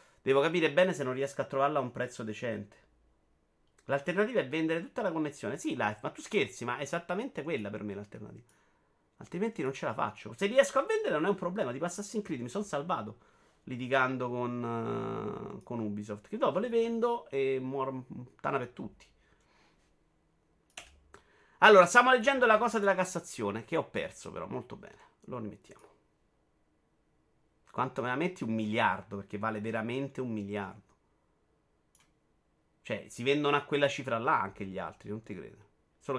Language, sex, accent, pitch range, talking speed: Italian, male, native, 105-150 Hz, 170 wpm